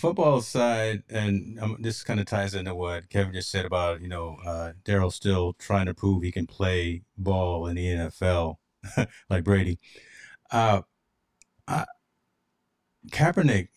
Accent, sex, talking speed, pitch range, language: American, male, 145 wpm, 95-115 Hz, English